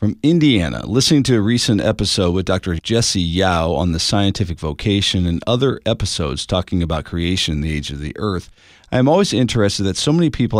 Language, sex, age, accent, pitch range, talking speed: English, male, 40-59, American, 95-125 Hz, 200 wpm